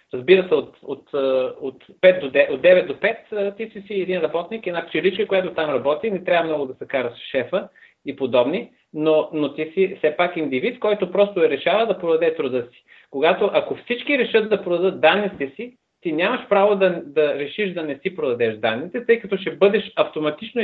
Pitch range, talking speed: 150-200 Hz, 210 wpm